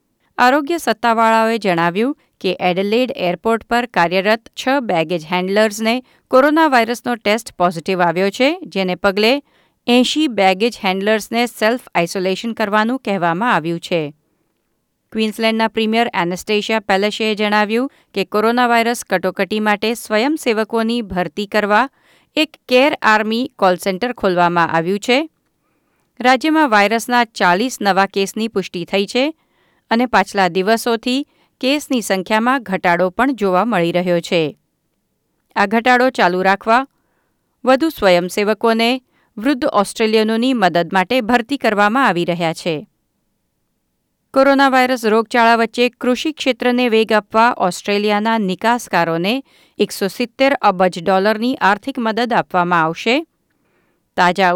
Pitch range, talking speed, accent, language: 190-245 Hz, 100 wpm, native, Gujarati